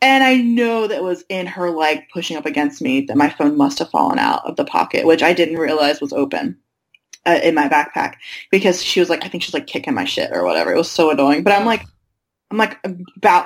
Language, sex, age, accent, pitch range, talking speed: English, female, 20-39, American, 155-190 Hz, 245 wpm